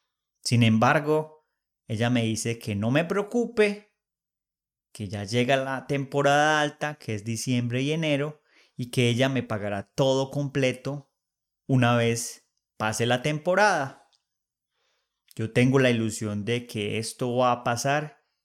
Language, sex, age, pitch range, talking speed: English, male, 30-49, 110-150 Hz, 135 wpm